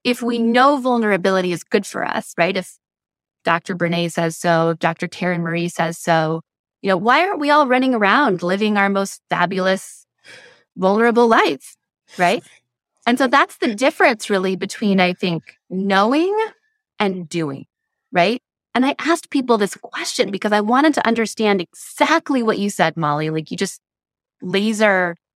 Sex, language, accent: female, English, American